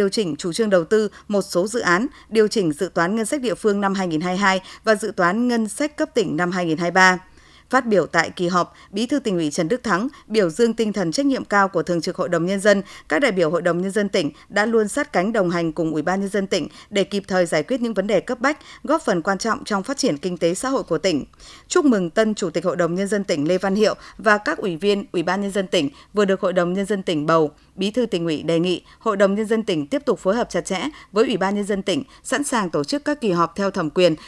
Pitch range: 180-230 Hz